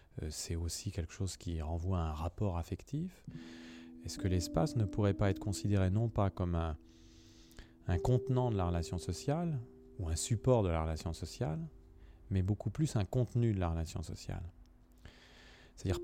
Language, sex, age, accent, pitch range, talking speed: French, male, 30-49, French, 85-110 Hz, 170 wpm